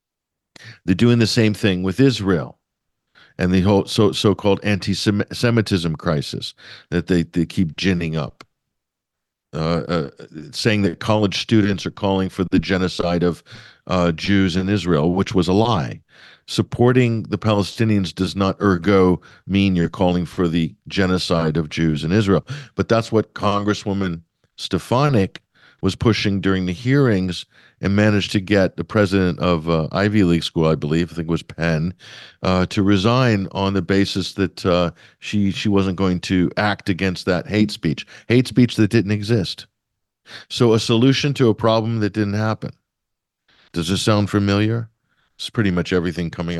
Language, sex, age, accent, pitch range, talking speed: English, male, 50-69, American, 90-110 Hz, 160 wpm